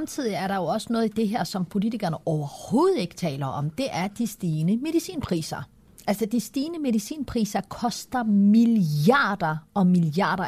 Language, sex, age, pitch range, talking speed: Danish, female, 30-49, 185-240 Hz, 160 wpm